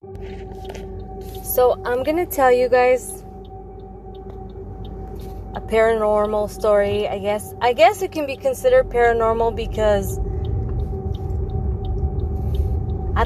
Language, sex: English, female